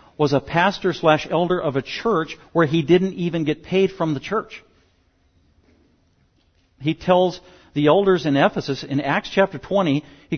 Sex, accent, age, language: male, American, 50-69, English